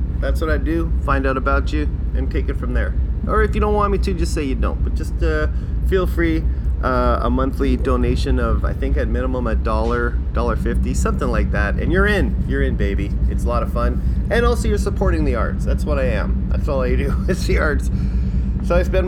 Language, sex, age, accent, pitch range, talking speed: English, male, 30-49, American, 65-75 Hz, 240 wpm